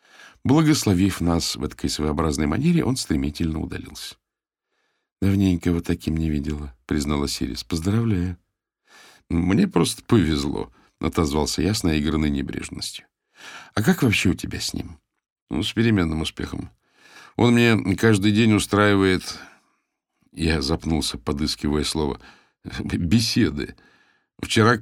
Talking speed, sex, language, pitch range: 120 wpm, male, Russian, 80-110 Hz